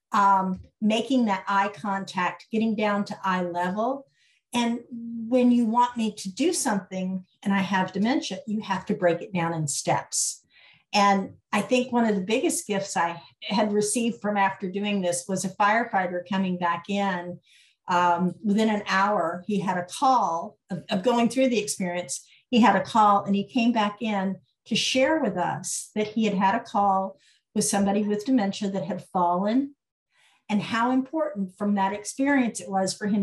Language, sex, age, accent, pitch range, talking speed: English, female, 50-69, American, 180-225 Hz, 180 wpm